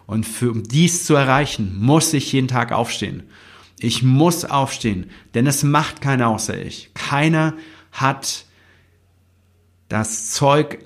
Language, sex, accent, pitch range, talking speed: German, male, German, 105-130 Hz, 125 wpm